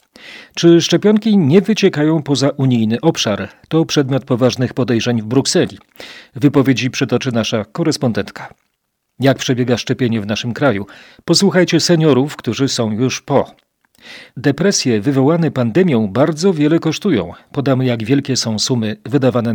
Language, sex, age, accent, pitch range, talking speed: Polish, male, 40-59, native, 120-155 Hz, 125 wpm